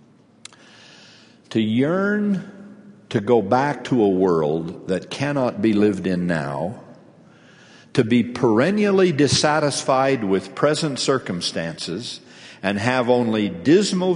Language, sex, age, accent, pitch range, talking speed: English, male, 60-79, American, 110-150 Hz, 105 wpm